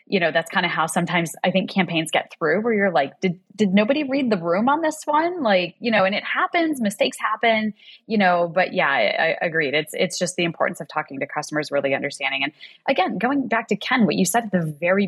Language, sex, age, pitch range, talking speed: English, female, 20-39, 160-215 Hz, 245 wpm